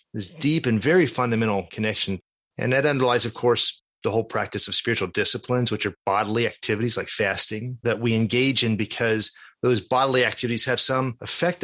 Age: 30-49